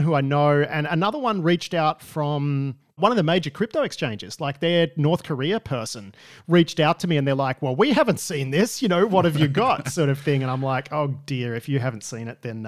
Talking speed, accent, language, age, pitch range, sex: 245 wpm, Australian, English, 40-59, 125-160 Hz, male